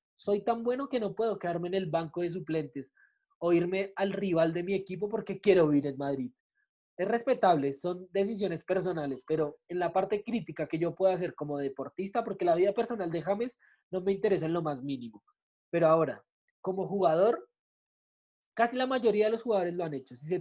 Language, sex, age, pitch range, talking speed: Spanish, male, 20-39, 170-210 Hz, 200 wpm